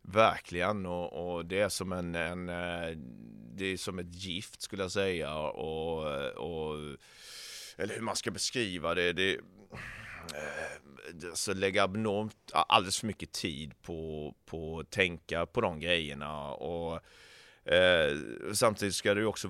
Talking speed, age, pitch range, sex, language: 140 wpm, 30-49, 85-100 Hz, male, Swedish